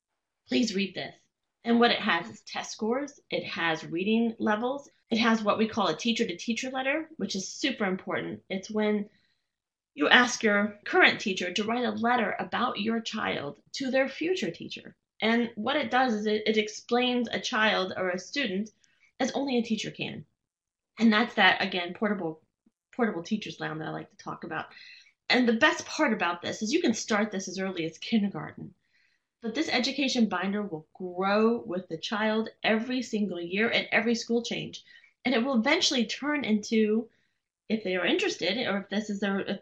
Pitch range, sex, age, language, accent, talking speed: 200-245 Hz, female, 20-39, English, American, 185 wpm